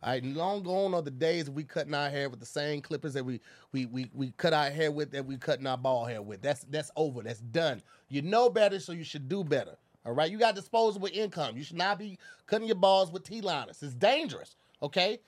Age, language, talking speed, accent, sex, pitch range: 30-49, English, 245 wpm, American, male, 150-230 Hz